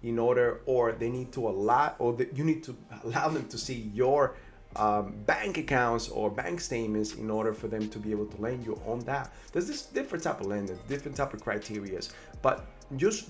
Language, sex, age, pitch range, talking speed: English, male, 30-49, 105-135 Hz, 210 wpm